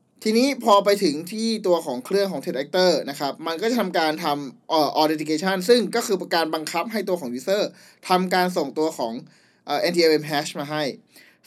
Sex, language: male, Thai